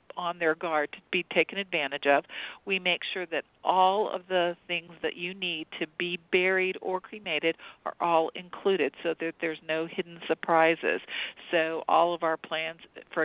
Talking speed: 175 wpm